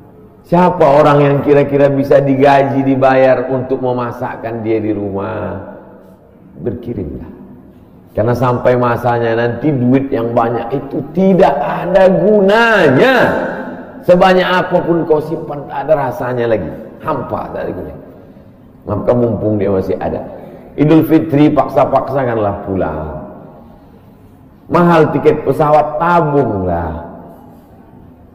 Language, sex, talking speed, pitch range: Indonesian, male, 100 wpm, 110-150 Hz